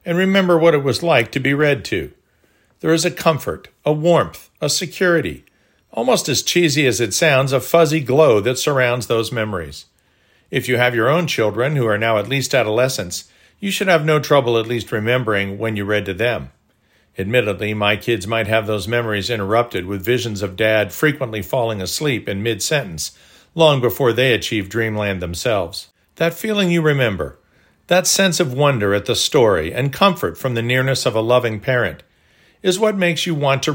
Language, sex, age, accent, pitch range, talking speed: English, male, 50-69, American, 110-155 Hz, 185 wpm